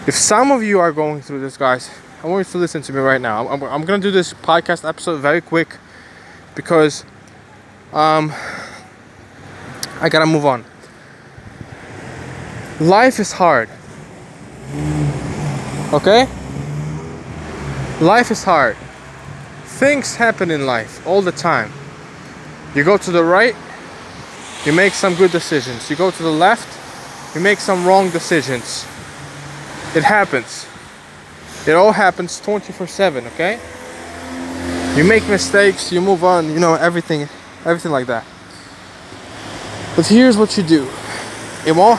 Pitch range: 125-185 Hz